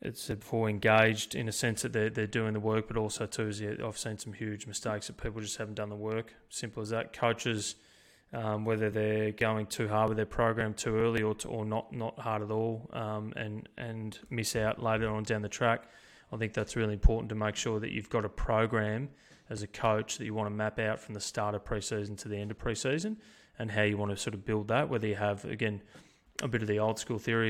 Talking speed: 245 wpm